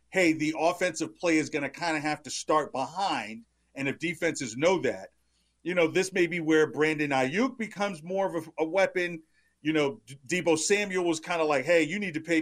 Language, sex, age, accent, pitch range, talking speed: English, male, 40-59, American, 140-185 Hz, 215 wpm